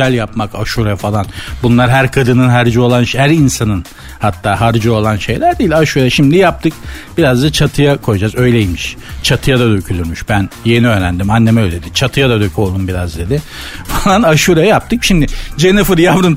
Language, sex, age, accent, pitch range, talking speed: Turkish, male, 60-79, native, 120-180 Hz, 155 wpm